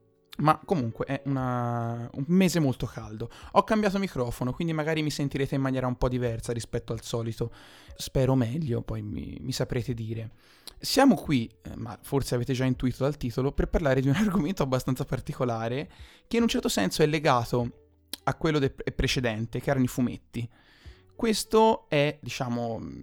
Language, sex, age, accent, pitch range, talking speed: Italian, male, 20-39, native, 120-145 Hz, 165 wpm